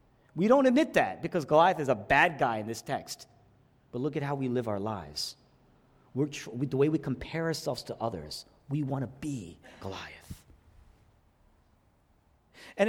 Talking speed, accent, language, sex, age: 160 wpm, American, English, male, 40-59